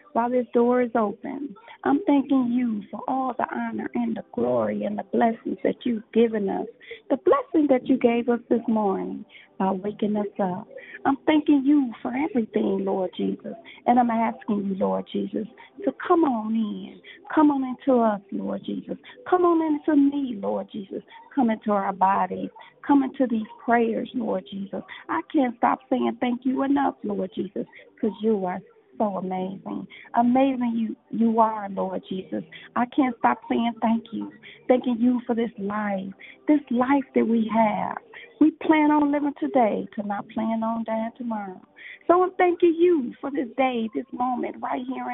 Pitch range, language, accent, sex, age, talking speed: 215-285 Hz, English, American, female, 40-59, 175 wpm